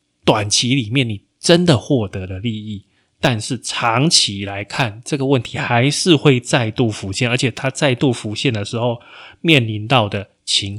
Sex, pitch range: male, 105-135 Hz